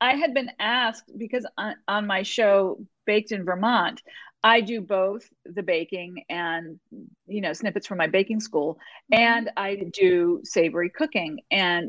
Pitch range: 180-245 Hz